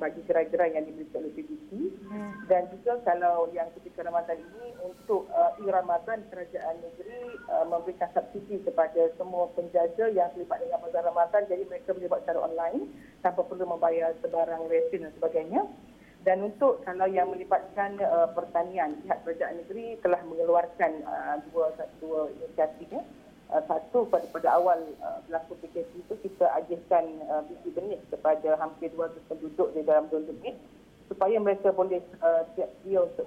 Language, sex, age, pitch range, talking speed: Malay, female, 40-59, 165-200 Hz, 155 wpm